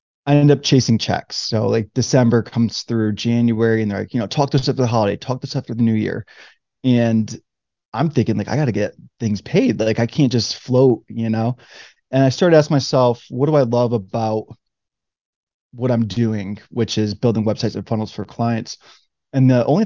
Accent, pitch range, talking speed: American, 110-130 Hz, 210 wpm